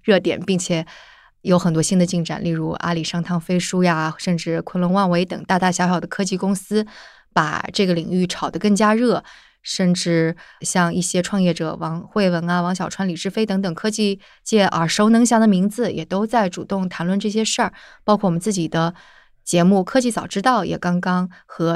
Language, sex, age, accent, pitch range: Chinese, female, 20-39, native, 175-205 Hz